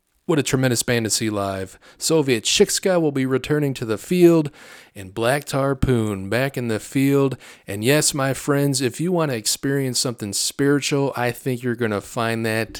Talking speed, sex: 190 wpm, male